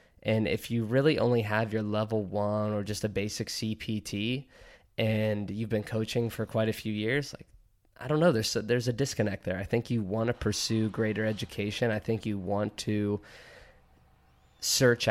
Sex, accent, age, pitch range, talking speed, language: male, American, 20-39, 105-115 Hz, 185 wpm, English